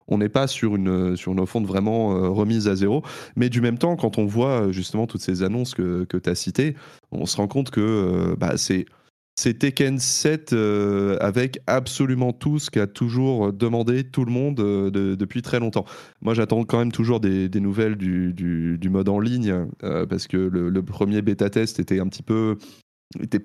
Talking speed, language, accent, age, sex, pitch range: 195 wpm, French, French, 20-39, male, 100-125 Hz